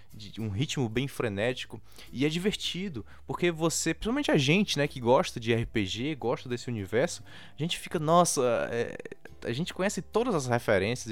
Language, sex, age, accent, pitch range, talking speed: Portuguese, male, 20-39, Brazilian, 110-165 Hz, 160 wpm